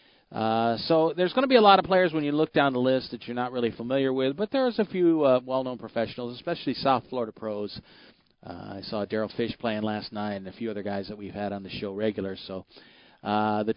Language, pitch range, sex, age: English, 110-140 Hz, male, 40-59